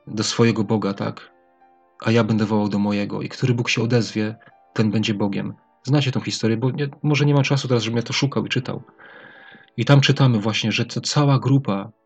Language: Polish